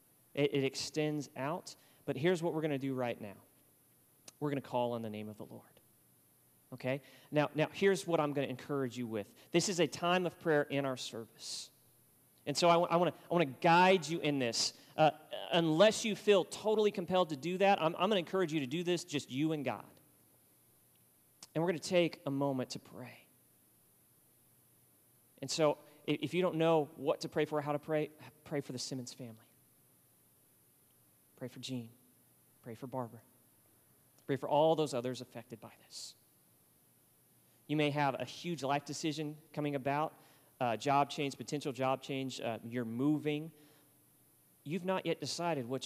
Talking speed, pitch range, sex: 180 wpm, 130-160 Hz, male